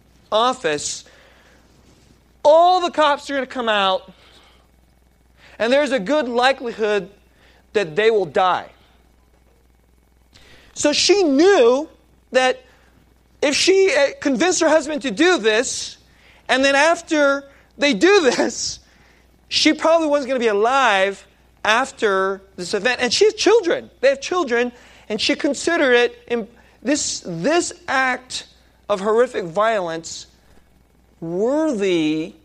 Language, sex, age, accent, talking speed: English, male, 30-49, American, 120 wpm